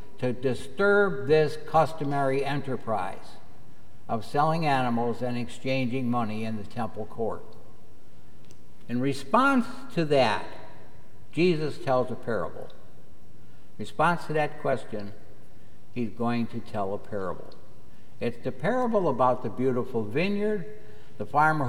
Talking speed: 120 wpm